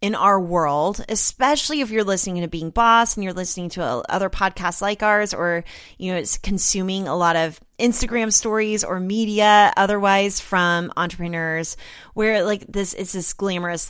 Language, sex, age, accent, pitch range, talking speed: English, female, 20-39, American, 165-210 Hz, 170 wpm